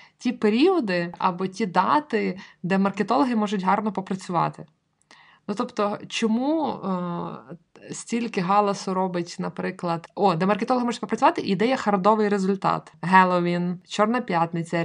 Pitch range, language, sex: 170-225 Hz, Ukrainian, female